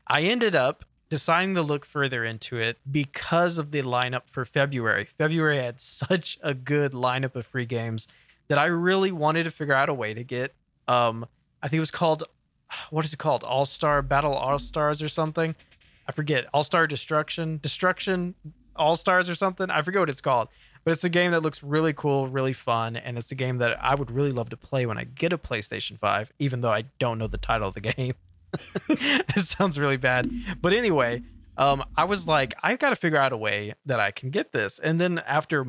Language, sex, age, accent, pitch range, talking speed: English, male, 20-39, American, 120-160 Hz, 210 wpm